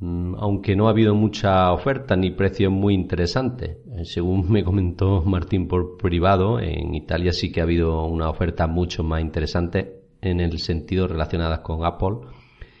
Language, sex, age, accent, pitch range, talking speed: Spanish, male, 40-59, Spanish, 85-105 Hz, 155 wpm